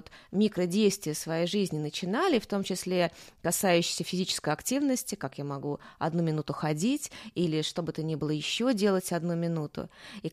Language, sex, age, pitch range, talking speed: Russian, female, 20-39, 170-225 Hz, 155 wpm